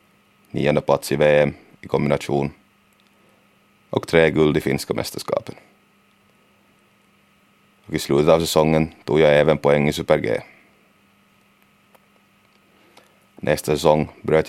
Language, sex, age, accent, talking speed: Swedish, male, 30-49, Finnish, 110 wpm